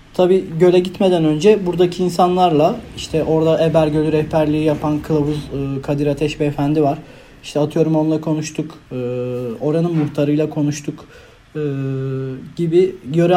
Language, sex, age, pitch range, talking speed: Turkish, male, 40-59, 145-175 Hz, 110 wpm